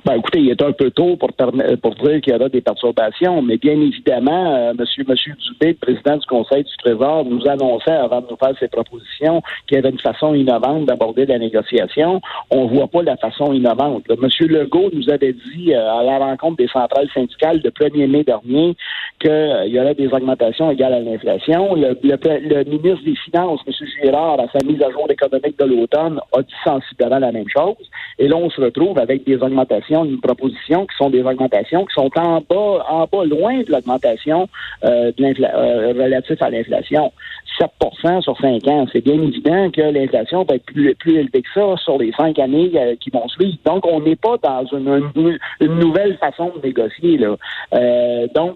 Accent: Canadian